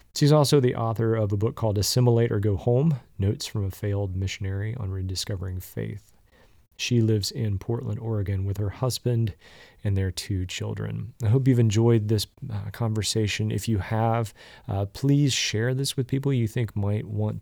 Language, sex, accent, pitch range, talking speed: English, male, American, 100-120 Hz, 180 wpm